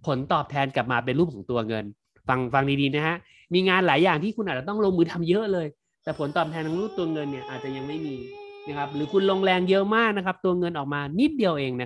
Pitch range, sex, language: 145-190 Hz, male, Thai